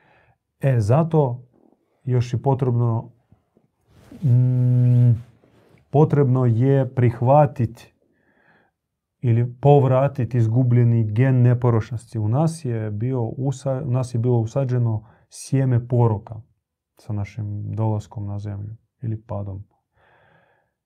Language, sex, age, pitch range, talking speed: Croatian, male, 30-49, 115-140 Hz, 90 wpm